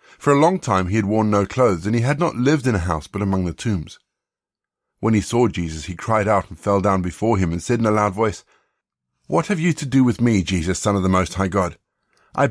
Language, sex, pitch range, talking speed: English, male, 95-130 Hz, 260 wpm